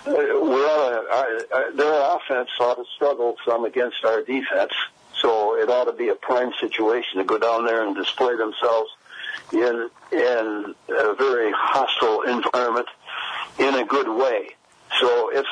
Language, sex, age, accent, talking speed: English, male, 60-79, American, 140 wpm